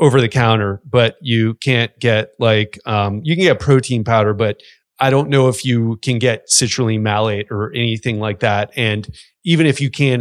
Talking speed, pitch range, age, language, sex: 180 wpm, 115-145 Hz, 30-49, English, male